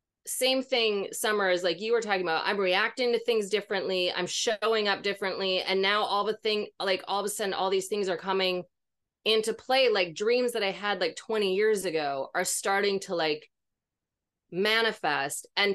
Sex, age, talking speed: female, 30-49, 190 wpm